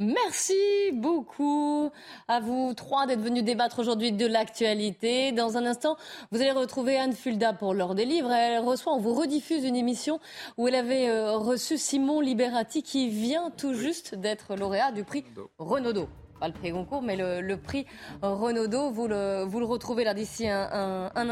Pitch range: 190-260 Hz